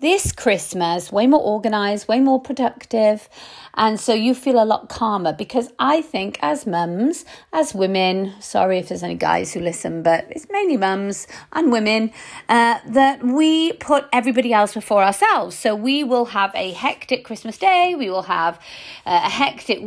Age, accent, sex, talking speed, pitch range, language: 40-59, British, female, 170 wpm, 205-275 Hz, English